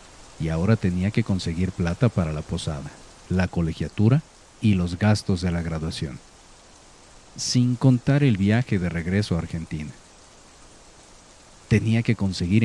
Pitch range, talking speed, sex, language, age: 90-115 Hz, 135 wpm, male, Spanish, 50-69